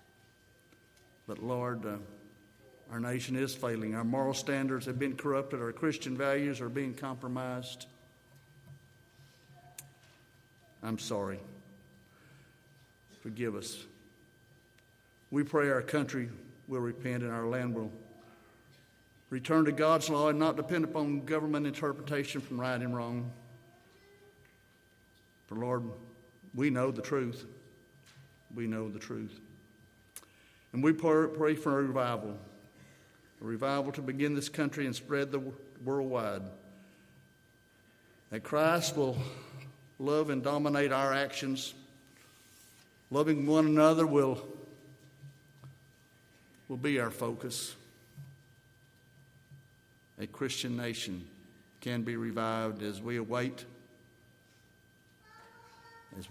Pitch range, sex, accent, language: 115-140 Hz, male, American, English